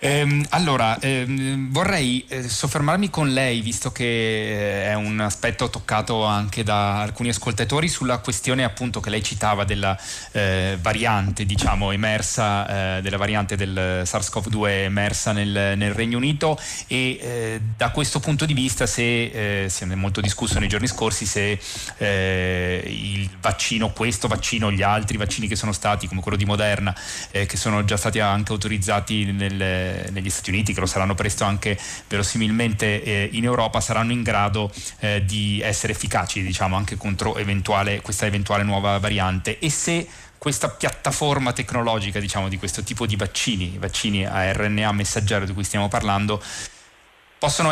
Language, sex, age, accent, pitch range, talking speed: Italian, male, 30-49, native, 100-115 Hz, 155 wpm